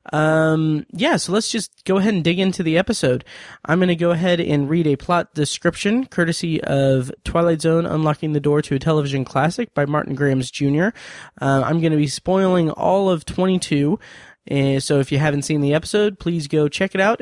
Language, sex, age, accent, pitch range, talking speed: English, male, 20-39, American, 145-175 Hz, 205 wpm